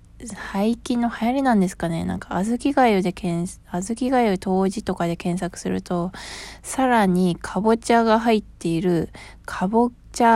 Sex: female